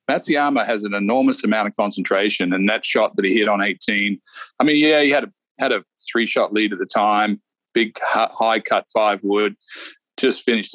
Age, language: 40-59, English